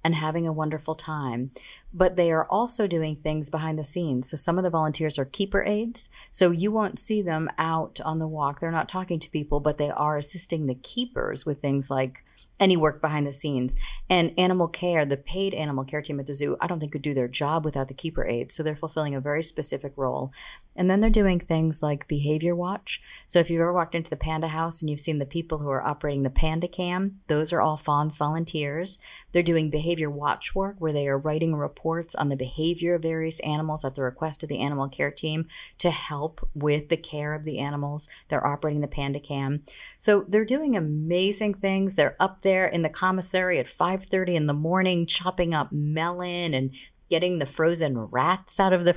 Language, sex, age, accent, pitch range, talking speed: English, female, 40-59, American, 150-180 Hz, 220 wpm